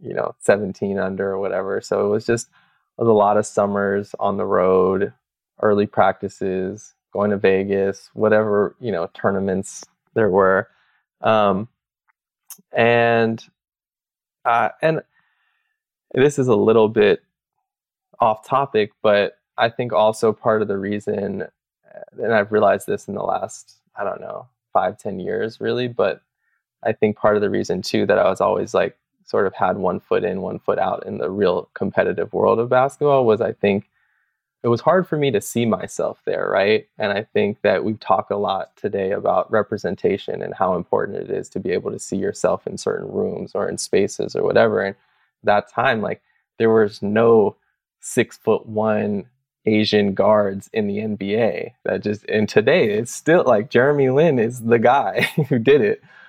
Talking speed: 175 wpm